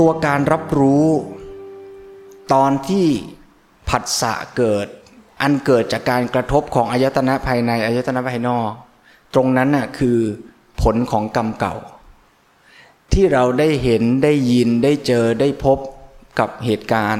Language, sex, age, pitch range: Thai, male, 20-39, 115-140 Hz